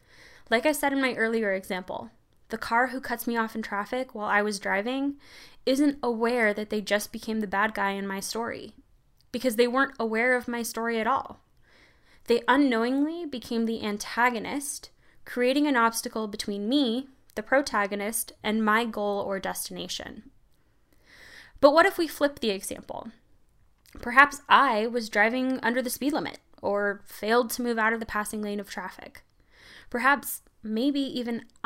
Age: 10-29